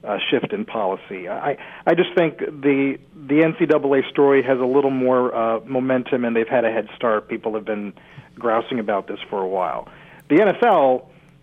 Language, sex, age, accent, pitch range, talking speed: English, male, 40-59, American, 135-185 Hz, 190 wpm